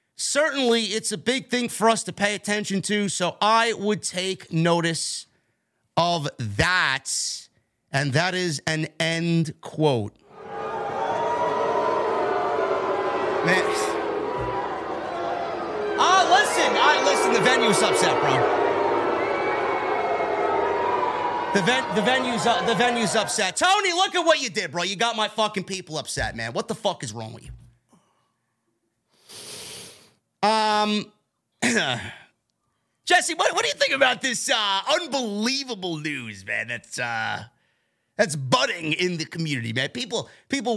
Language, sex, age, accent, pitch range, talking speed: English, male, 30-49, American, 145-220 Hz, 125 wpm